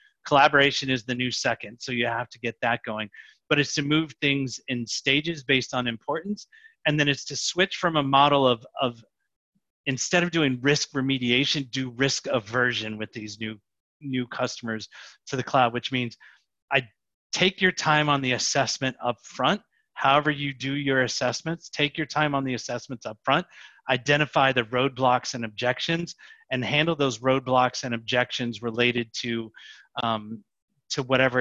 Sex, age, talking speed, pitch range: male, 30-49, 170 wpm, 115-140 Hz